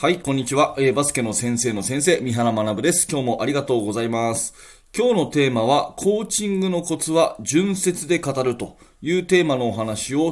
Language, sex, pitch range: Japanese, male, 115-175 Hz